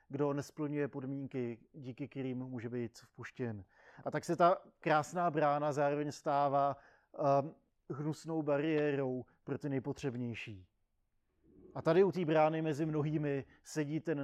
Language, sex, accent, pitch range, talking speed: Czech, male, native, 130-150 Hz, 130 wpm